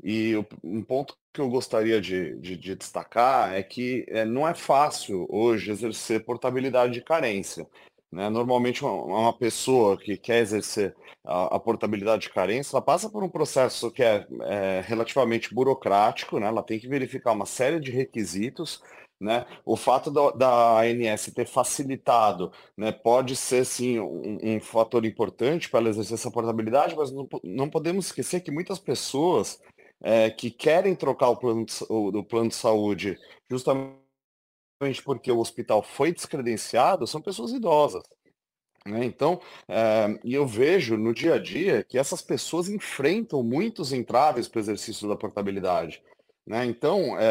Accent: Brazilian